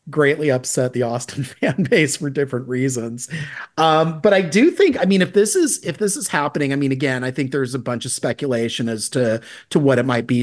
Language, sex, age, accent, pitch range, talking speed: English, male, 40-59, American, 115-140 Hz, 230 wpm